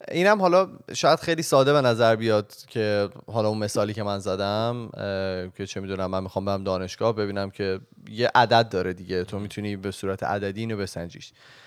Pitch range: 100-135 Hz